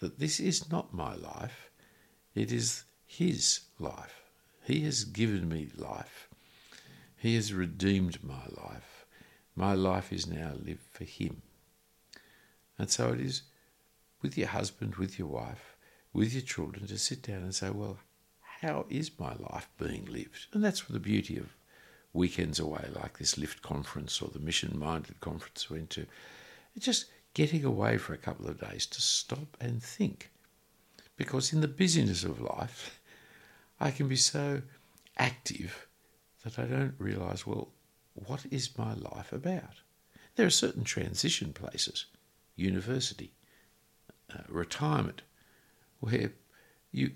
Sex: male